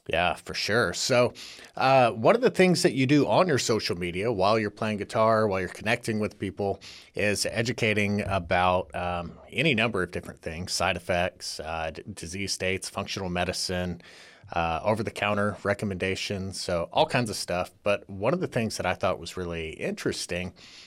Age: 30-49